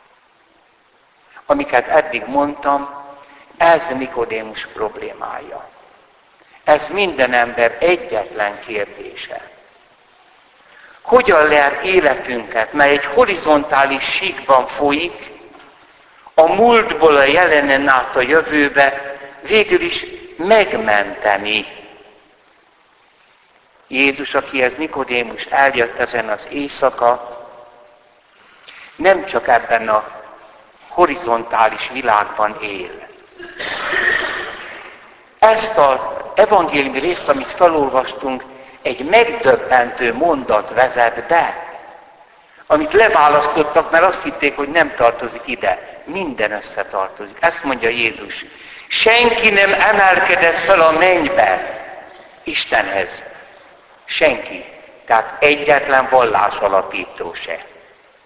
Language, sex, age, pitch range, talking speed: Hungarian, male, 60-79, 125-175 Hz, 80 wpm